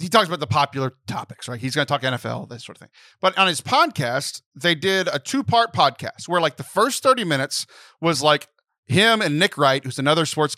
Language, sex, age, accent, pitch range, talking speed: English, male, 40-59, American, 135-185 Hz, 235 wpm